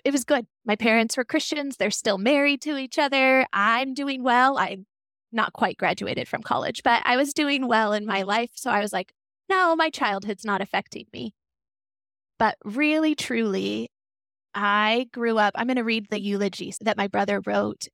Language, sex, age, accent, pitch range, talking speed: English, female, 20-39, American, 195-240 Hz, 185 wpm